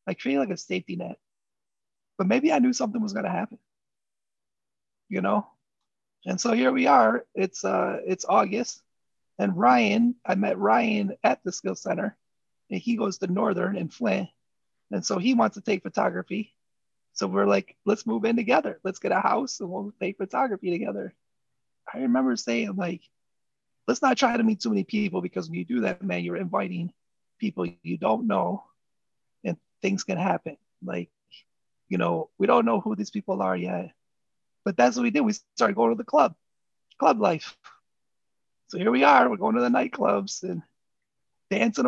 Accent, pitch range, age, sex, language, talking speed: American, 175-225 Hz, 30-49, male, English, 180 wpm